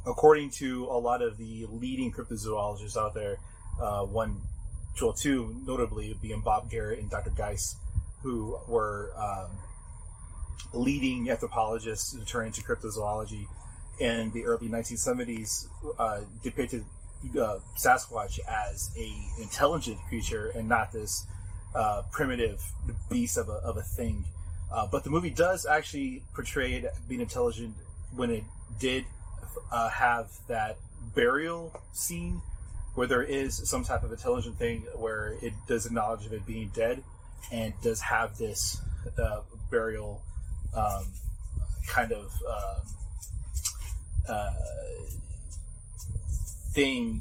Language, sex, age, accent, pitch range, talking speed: English, male, 30-49, American, 90-115 Hz, 125 wpm